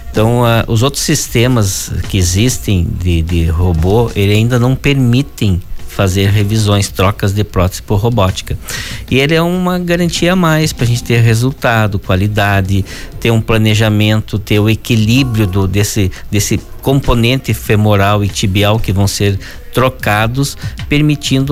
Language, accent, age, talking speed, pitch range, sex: Portuguese, Brazilian, 50-69, 145 wpm, 100-125 Hz, male